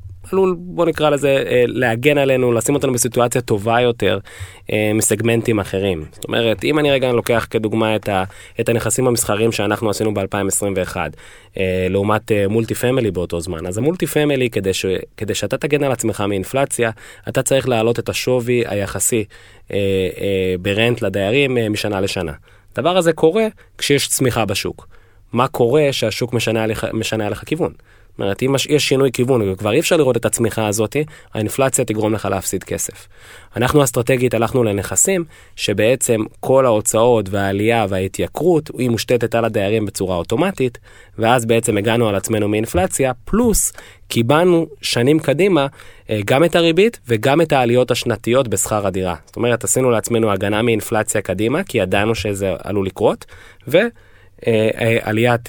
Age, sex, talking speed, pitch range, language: 20-39, male, 140 wpm, 100-130 Hz, Hebrew